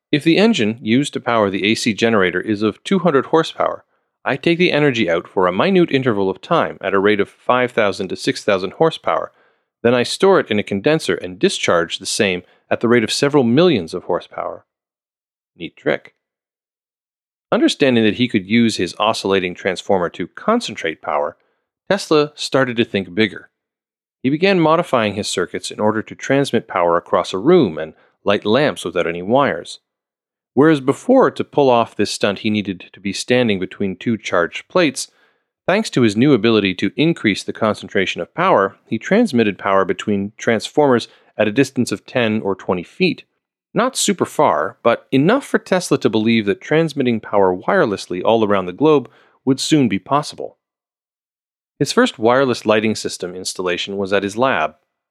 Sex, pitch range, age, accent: male, 100-150 Hz, 40-59, American